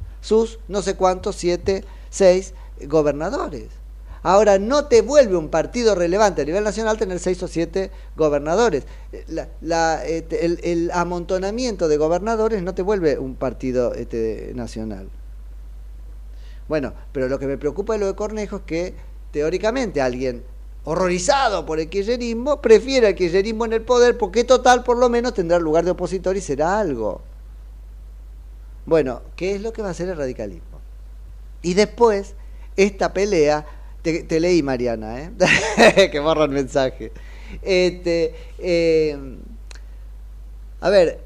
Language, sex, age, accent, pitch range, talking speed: Spanish, male, 40-59, Argentinian, 130-205 Hz, 145 wpm